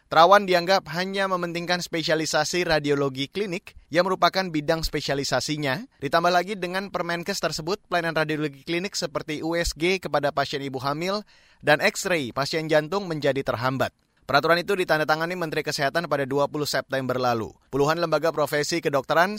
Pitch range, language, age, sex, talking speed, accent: 140-175 Hz, Indonesian, 20-39, male, 135 wpm, native